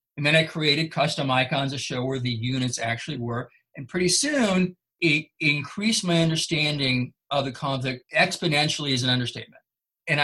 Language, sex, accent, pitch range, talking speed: English, male, American, 140-185 Hz, 165 wpm